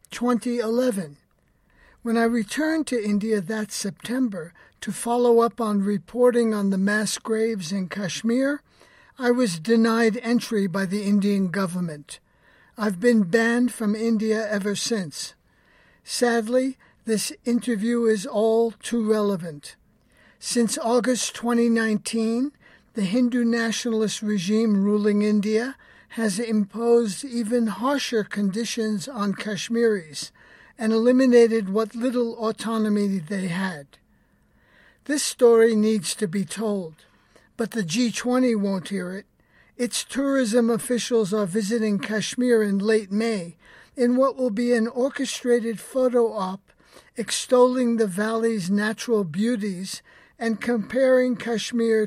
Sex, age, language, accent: male, 50-69, English, American